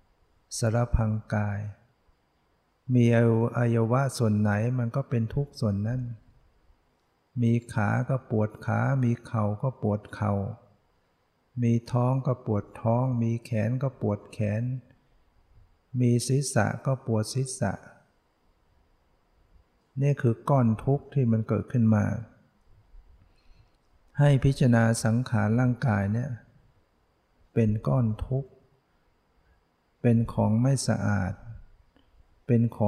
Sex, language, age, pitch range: male, Thai, 60-79, 105-125 Hz